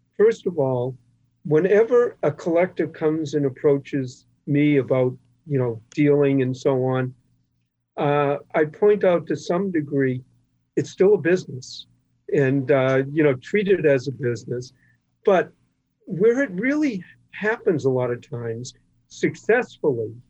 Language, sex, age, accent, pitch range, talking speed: English, male, 50-69, American, 130-175 Hz, 140 wpm